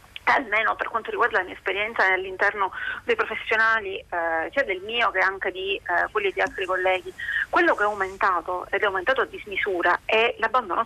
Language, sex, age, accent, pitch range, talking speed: Italian, female, 30-49, native, 190-240 Hz, 180 wpm